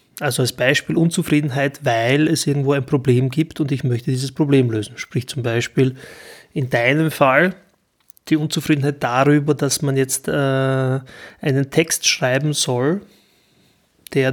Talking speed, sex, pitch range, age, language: 140 wpm, male, 135-155 Hz, 30-49, German